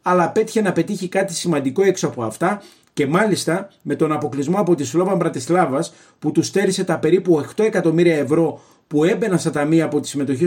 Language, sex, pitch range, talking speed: Greek, male, 155-195 Hz, 190 wpm